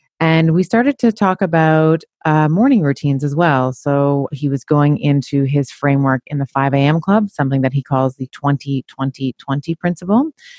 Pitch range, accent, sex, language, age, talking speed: 135-160 Hz, American, female, English, 30-49, 170 wpm